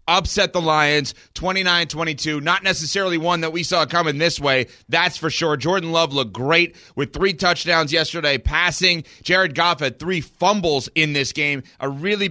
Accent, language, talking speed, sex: American, English, 170 wpm, male